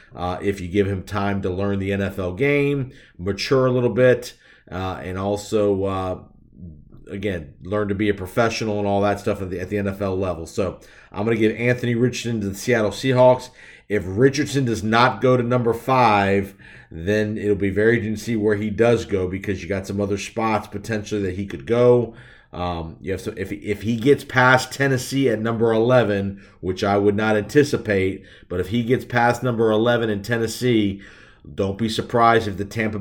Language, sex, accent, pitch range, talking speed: English, male, American, 100-115 Hz, 200 wpm